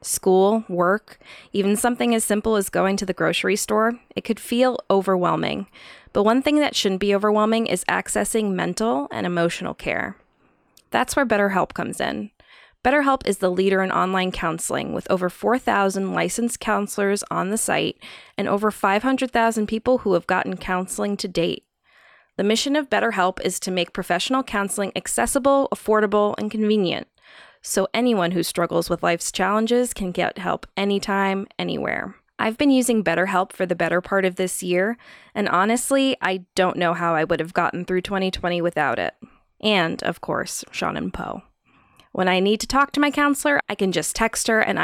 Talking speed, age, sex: 175 wpm, 20-39, female